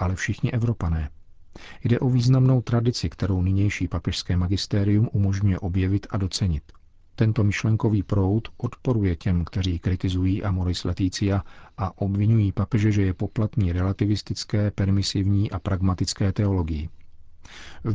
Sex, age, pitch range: male, 40-59, 95-115 Hz